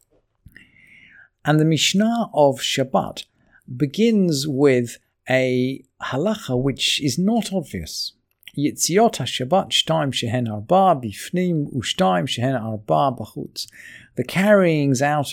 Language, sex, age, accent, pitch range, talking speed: English, male, 50-69, British, 120-165 Hz, 100 wpm